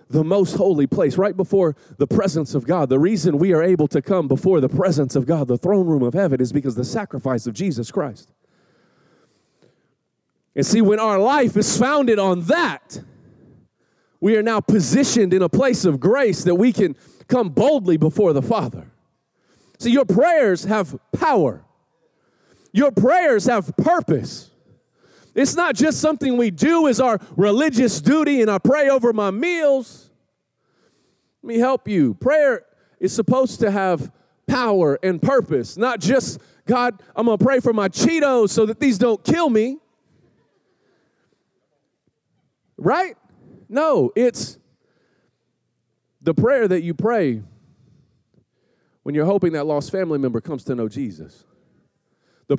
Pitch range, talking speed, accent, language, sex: 160-245 Hz, 155 wpm, American, English, male